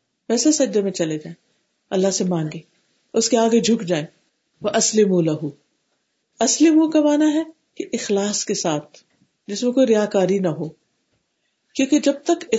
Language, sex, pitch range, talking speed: Urdu, female, 180-255 Hz, 155 wpm